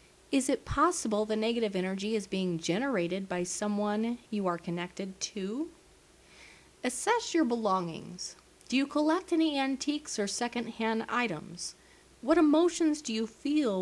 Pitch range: 180-255 Hz